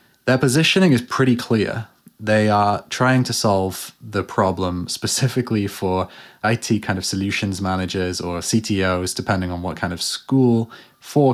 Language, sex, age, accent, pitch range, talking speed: English, male, 20-39, British, 95-120 Hz, 150 wpm